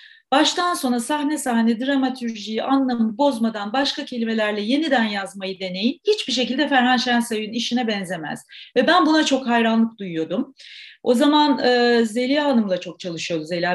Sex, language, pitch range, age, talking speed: female, Turkish, 205-275 Hz, 40-59, 140 wpm